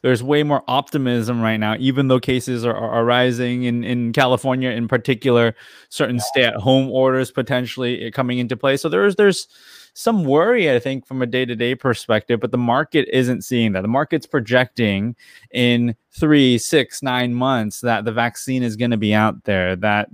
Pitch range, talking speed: 110-130 Hz, 190 wpm